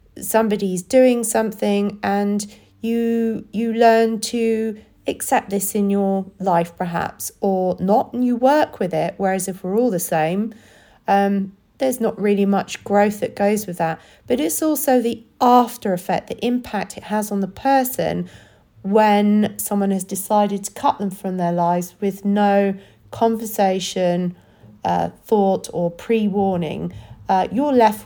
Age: 40-59